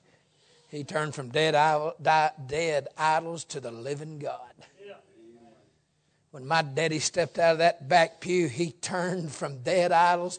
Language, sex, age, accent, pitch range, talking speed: English, male, 60-79, American, 135-165 Hz, 135 wpm